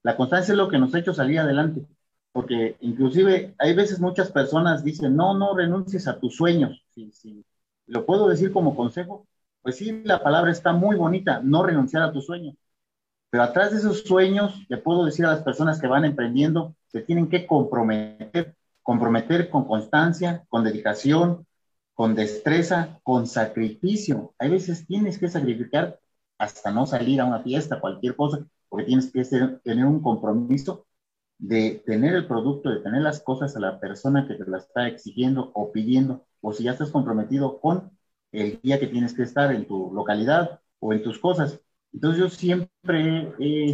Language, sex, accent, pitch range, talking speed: Spanish, male, Mexican, 120-170 Hz, 180 wpm